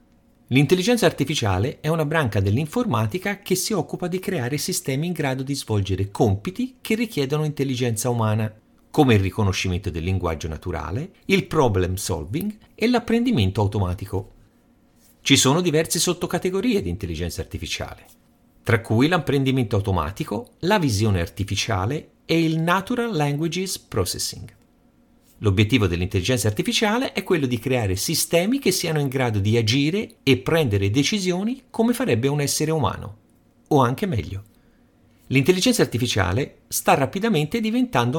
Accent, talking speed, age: native, 130 wpm, 40-59